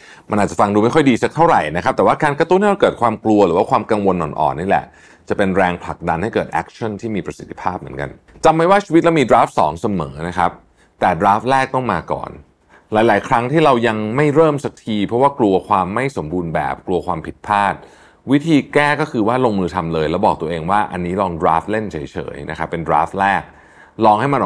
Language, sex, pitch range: Thai, male, 90-135 Hz